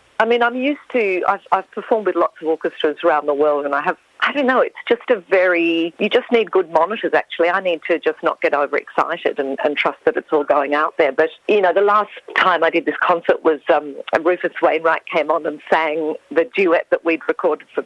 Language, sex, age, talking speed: English, female, 50-69, 240 wpm